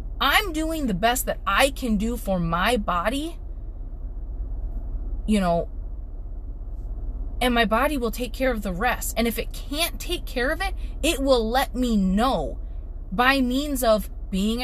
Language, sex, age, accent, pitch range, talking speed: English, female, 30-49, American, 195-275 Hz, 160 wpm